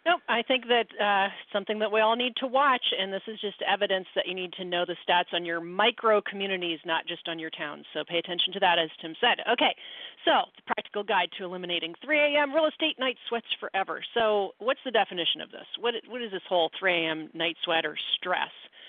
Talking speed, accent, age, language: 230 wpm, American, 40-59, English